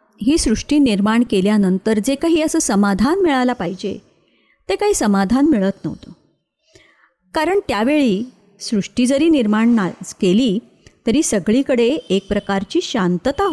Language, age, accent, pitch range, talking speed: Marathi, 30-49, native, 195-280 Hz, 115 wpm